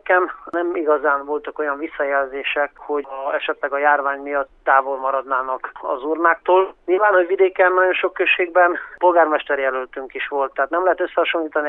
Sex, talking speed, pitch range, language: male, 145 wpm, 145-175 Hz, Hungarian